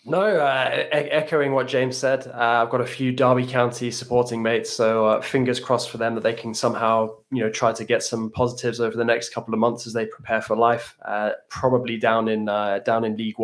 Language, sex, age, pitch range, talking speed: English, male, 20-39, 115-130 Hz, 230 wpm